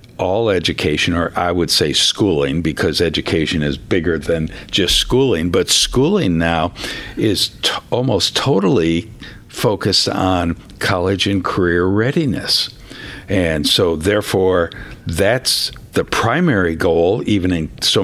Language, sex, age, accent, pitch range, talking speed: English, male, 60-79, American, 85-105 Hz, 120 wpm